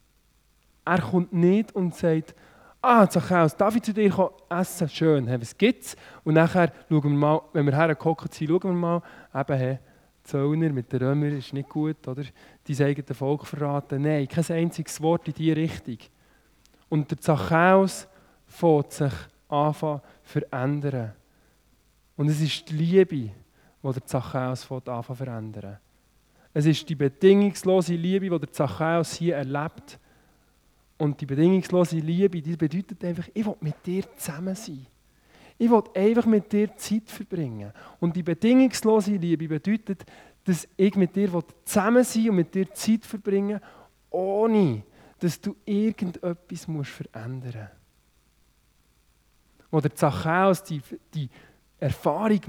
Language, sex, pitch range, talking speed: German, male, 140-185 Hz, 150 wpm